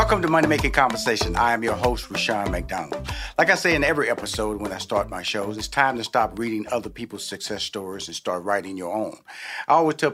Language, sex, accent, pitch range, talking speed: English, male, American, 110-145 Hz, 230 wpm